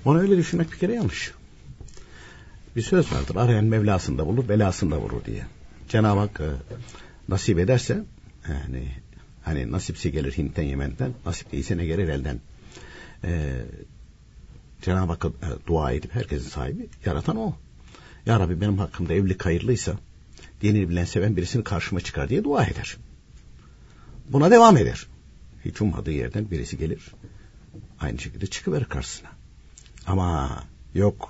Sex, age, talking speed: male, 60-79, 130 wpm